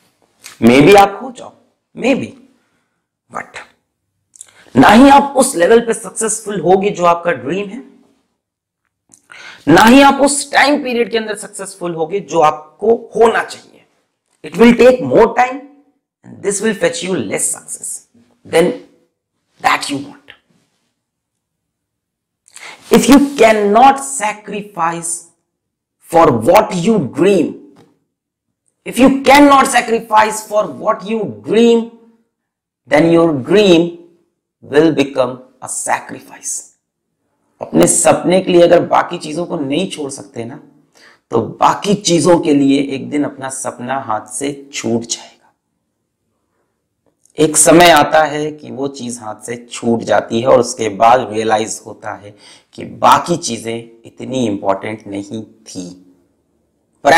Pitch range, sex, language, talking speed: 140-230 Hz, male, Hindi, 135 wpm